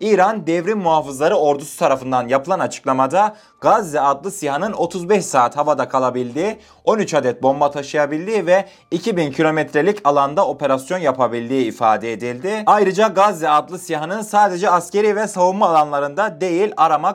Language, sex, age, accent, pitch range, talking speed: Turkish, male, 30-49, native, 150-210 Hz, 130 wpm